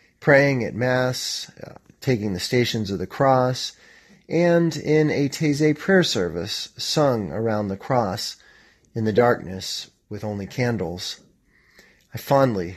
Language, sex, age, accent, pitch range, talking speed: English, male, 30-49, American, 105-135 Hz, 130 wpm